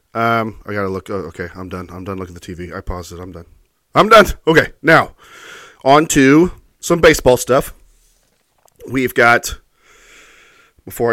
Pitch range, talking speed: 100-135 Hz, 175 wpm